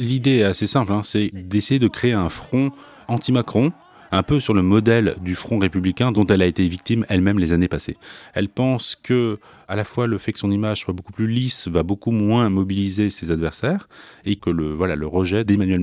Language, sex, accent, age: French, male, French, 30-49